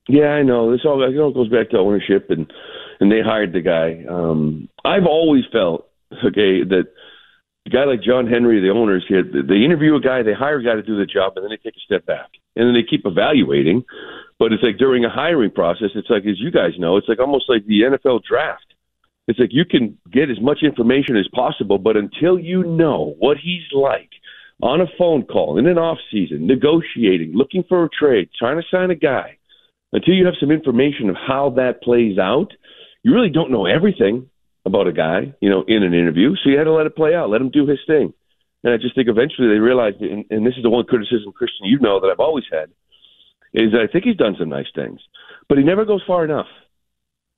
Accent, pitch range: American, 110-165 Hz